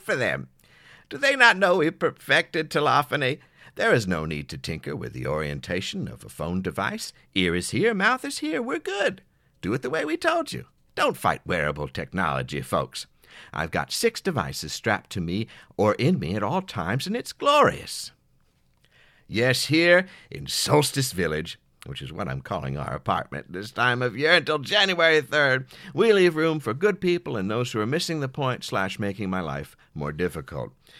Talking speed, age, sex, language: 185 wpm, 60-79, male, English